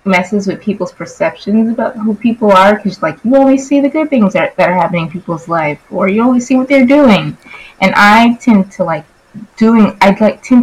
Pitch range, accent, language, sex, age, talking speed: 175-225 Hz, American, English, female, 20-39, 220 wpm